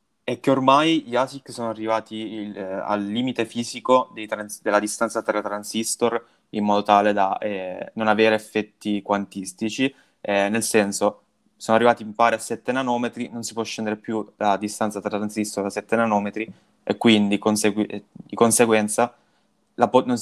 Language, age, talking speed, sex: Italian, 20-39, 170 wpm, male